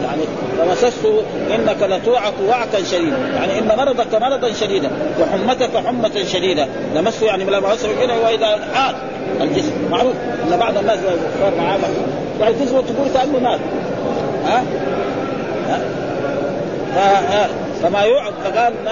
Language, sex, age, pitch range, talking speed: Arabic, male, 40-59, 210-260 Hz, 115 wpm